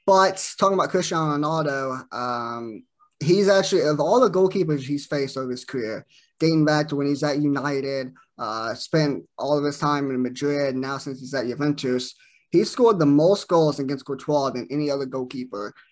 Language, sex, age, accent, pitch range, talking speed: English, male, 20-39, American, 130-155 Hz, 180 wpm